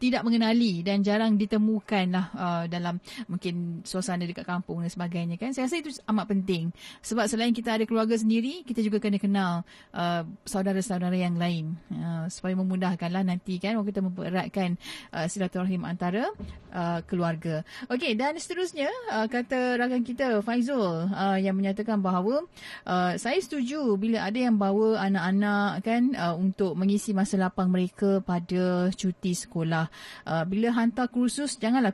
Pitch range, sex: 185-235 Hz, female